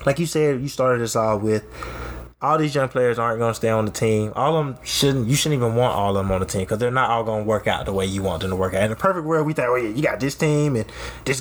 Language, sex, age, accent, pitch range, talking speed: English, male, 20-39, American, 105-130 Hz, 330 wpm